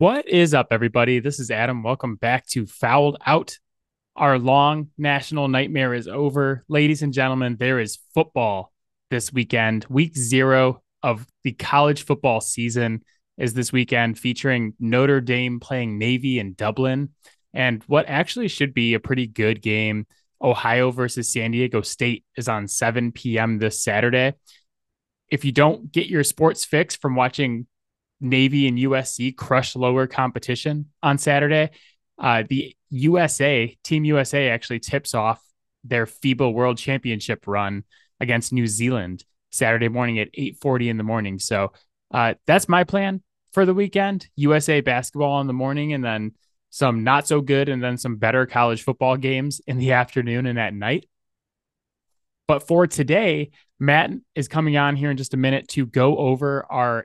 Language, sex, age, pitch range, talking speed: English, male, 20-39, 120-145 Hz, 160 wpm